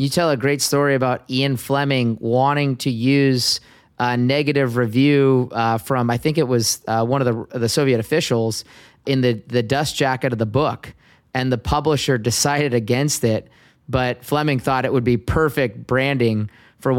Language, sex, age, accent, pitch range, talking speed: English, male, 30-49, American, 120-140 Hz, 175 wpm